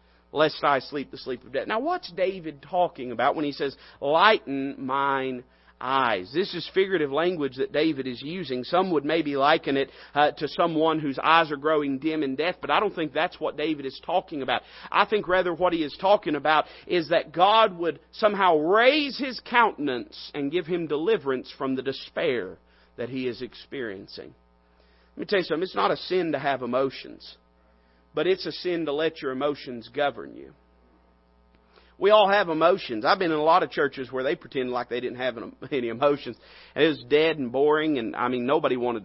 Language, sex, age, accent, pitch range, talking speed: English, male, 40-59, American, 125-165 Hz, 200 wpm